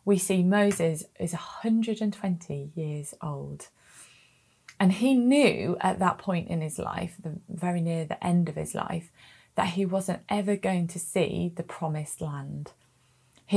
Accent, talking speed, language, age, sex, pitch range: British, 150 wpm, English, 20-39, female, 170-210 Hz